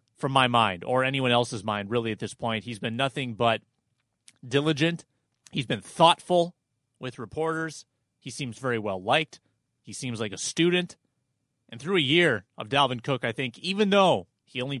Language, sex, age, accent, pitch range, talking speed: English, male, 30-49, American, 120-160 Hz, 175 wpm